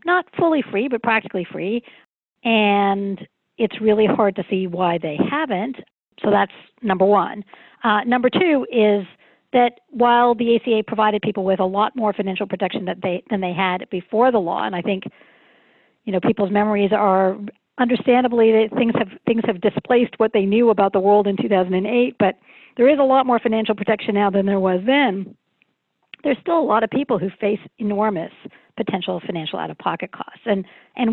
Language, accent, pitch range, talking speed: English, American, 190-240 Hz, 185 wpm